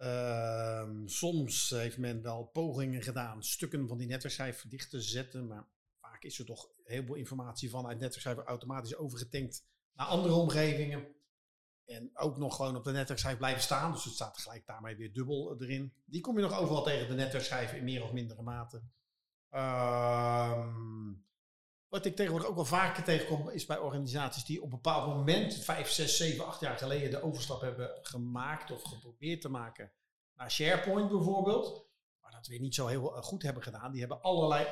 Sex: male